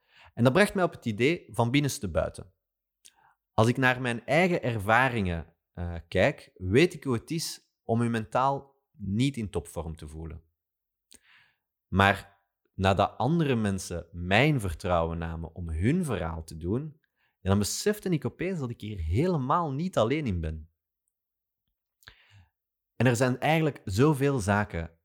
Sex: male